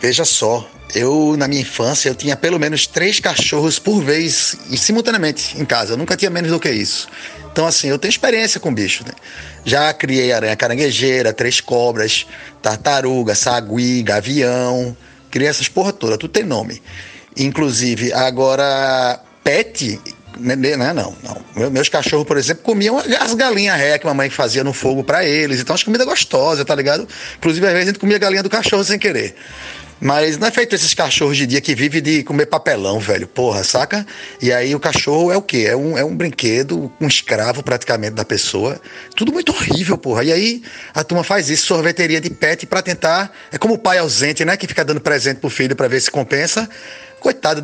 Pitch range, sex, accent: 130-180 Hz, male, Brazilian